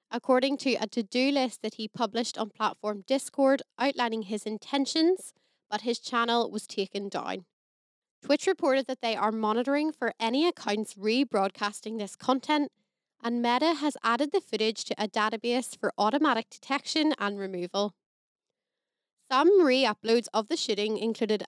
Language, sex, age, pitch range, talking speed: English, female, 10-29, 215-275 Hz, 145 wpm